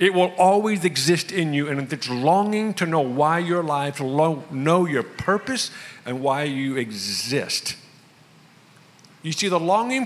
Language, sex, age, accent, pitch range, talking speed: English, male, 50-69, American, 135-180 Hz, 150 wpm